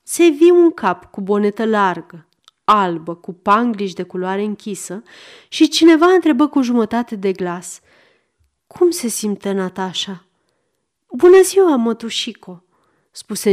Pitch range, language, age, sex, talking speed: 190-275 Hz, Romanian, 30-49, female, 125 wpm